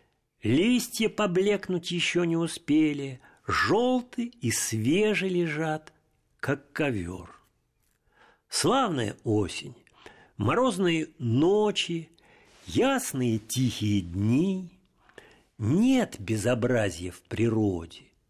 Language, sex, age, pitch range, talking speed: Russian, male, 50-69, 115-180 Hz, 70 wpm